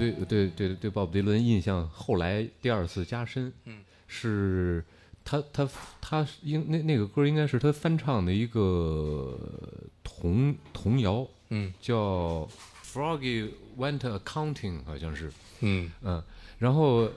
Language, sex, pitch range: Chinese, male, 90-115 Hz